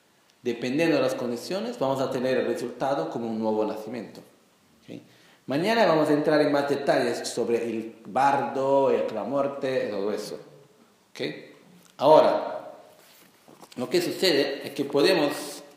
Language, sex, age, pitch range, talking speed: Italian, male, 40-59, 115-150 Hz, 140 wpm